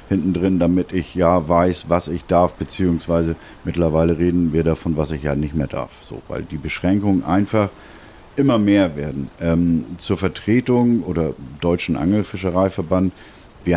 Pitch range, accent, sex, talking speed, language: 85-105 Hz, German, male, 150 wpm, German